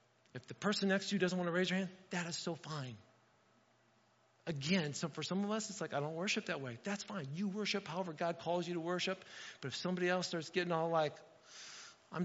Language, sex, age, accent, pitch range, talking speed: English, male, 40-59, American, 155-195 Hz, 235 wpm